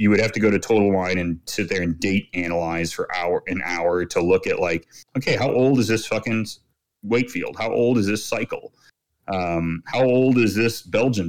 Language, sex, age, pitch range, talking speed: English, male, 30-49, 90-130 Hz, 215 wpm